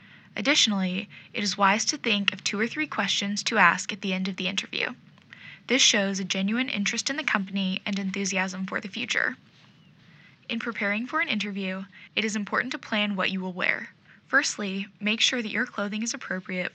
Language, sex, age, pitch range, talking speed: English, female, 10-29, 190-235 Hz, 195 wpm